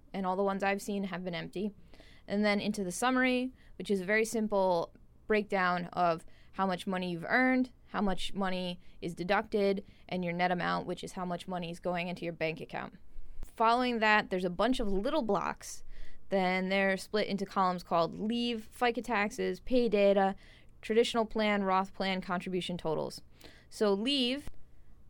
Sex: female